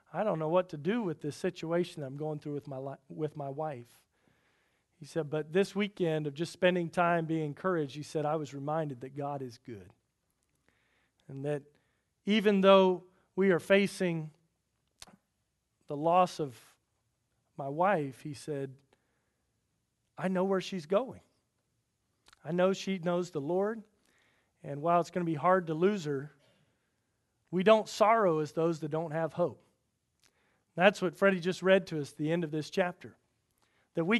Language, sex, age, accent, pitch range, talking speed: English, male, 40-59, American, 150-195 Hz, 165 wpm